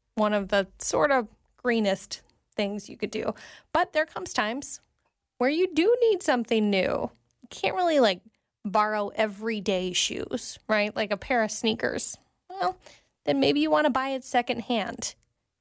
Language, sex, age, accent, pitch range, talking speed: English, female, 20-39, American, 205-285 Hz, 160 wpm